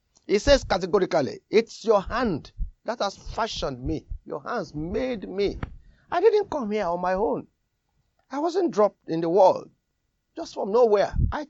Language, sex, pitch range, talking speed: English, male, 145-200 Hz, 160 wpm